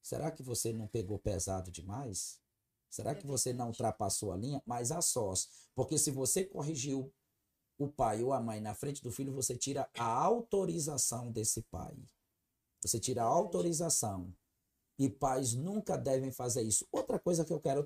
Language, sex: Portuguese, male